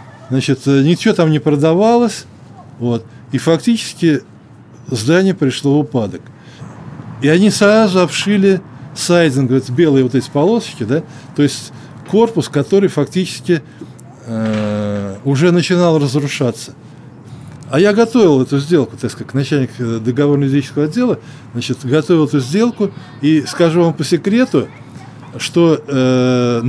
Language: Russian